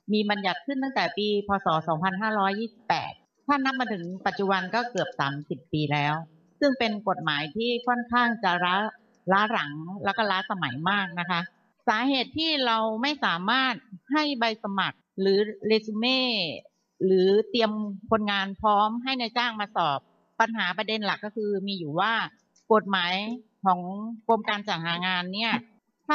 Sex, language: female, Thai